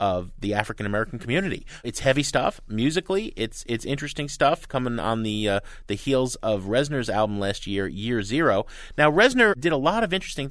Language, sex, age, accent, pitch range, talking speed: English, male, 30-49, American, 105-155 Hz, 190 wpm